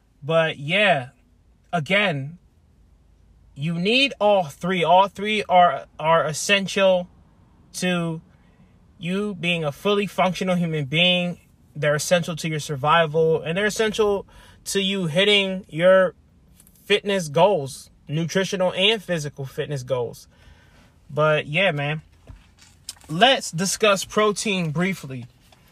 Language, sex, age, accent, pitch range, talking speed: English, male, 20-39, American, 145-185 Hz, 105 wpm